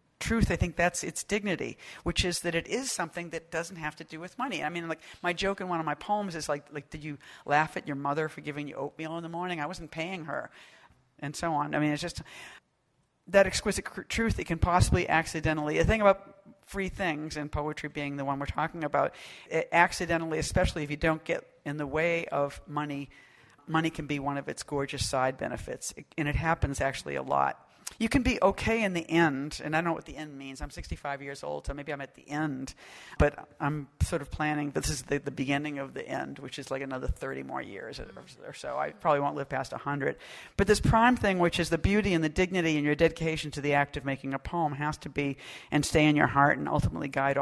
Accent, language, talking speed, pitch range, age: American, English, 240 wpm, 140-170 Hz, 50-69